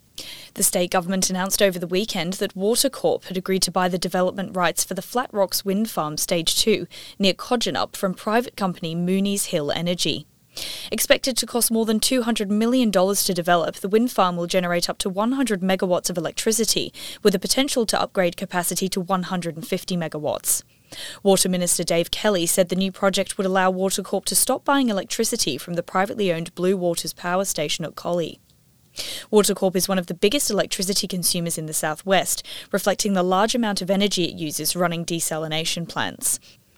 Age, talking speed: 20-39, 175 wpm